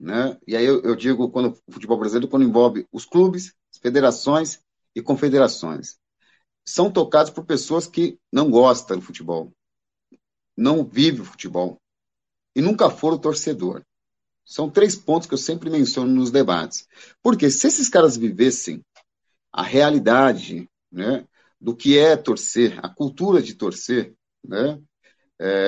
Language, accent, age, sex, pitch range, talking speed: Portuguese, Brazilian, 50-69, male, 115-170 Hz, 145 wpm